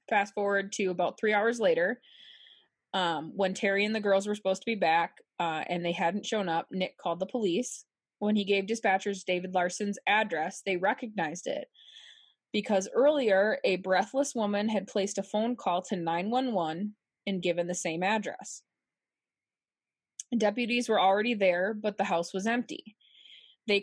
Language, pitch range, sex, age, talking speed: English, 185-225 Hz, female, 20-39, 165 wpm